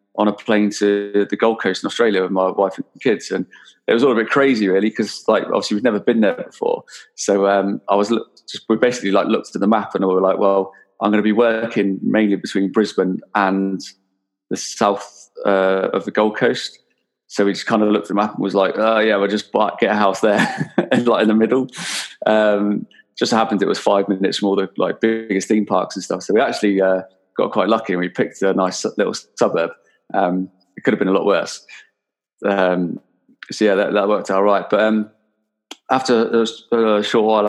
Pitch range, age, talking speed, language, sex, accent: 95-105 Hz, 20-39, 225 wpm, English, male, British